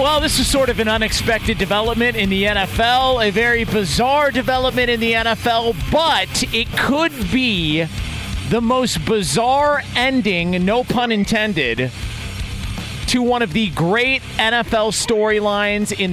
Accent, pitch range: American, 150-210 Hz